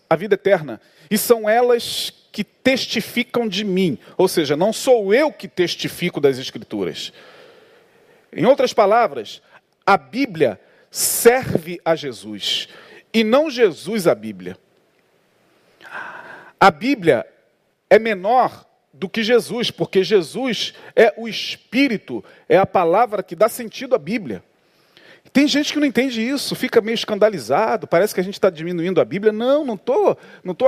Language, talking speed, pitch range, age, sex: Portuguese, 145 wpm, 175-240 Hz, 40-59, male